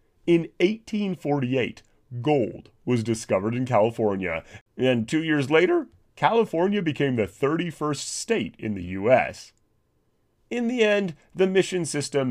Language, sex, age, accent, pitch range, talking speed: English, male, 30-49, American, 110-155 Hz, 120 wpm